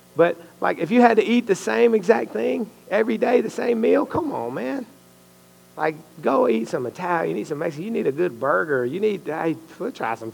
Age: 40-59